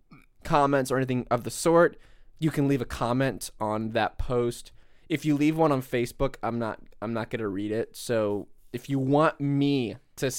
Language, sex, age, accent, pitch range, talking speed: English, male, 20-39, American, 110-135 Hz, 195 wpm